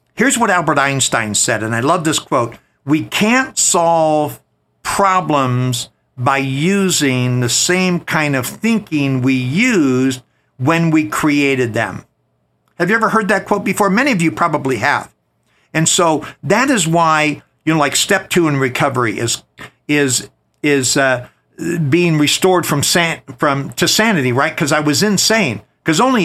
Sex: male